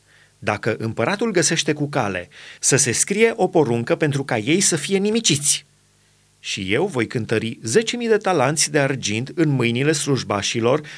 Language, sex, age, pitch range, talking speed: Romanian, male, 30-49, 130-170 Hz, 155 wpm